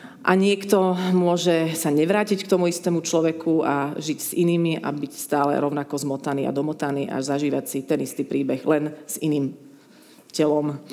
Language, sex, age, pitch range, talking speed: Czech, female, 30-49, 150-180 Hz, 165 wpm